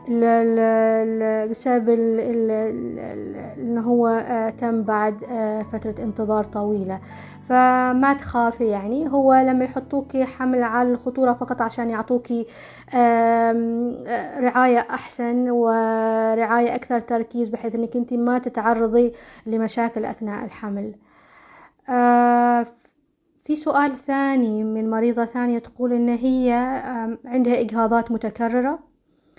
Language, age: Arabic, 20-39